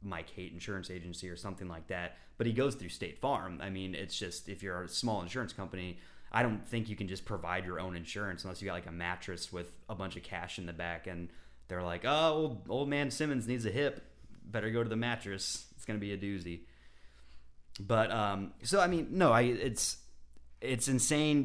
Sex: male